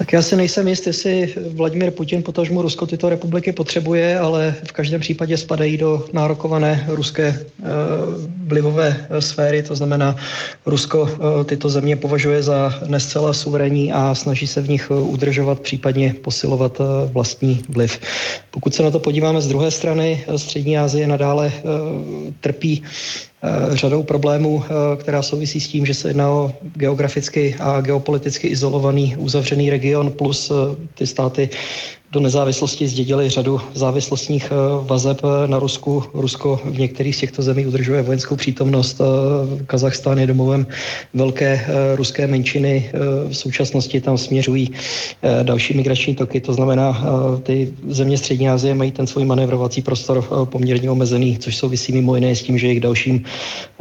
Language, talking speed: Czech, 145 wpm